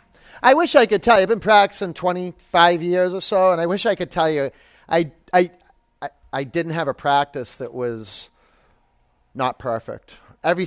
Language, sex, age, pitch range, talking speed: English, male, 40-59, 140-180 Hz, 185 wpm